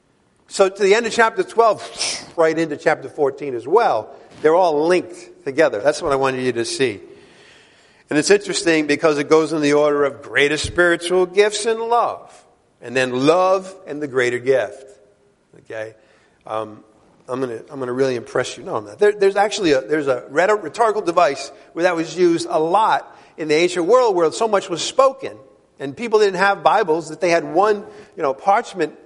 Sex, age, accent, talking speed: male, 50-69, American, 190 wpm